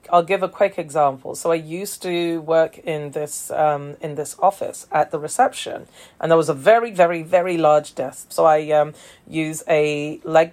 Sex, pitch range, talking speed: female, 155-205 Hz, 195 wpm